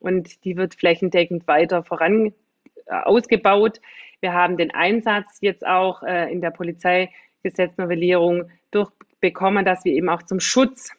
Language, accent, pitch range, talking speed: German, German, 180-210 Hz, 135 wpm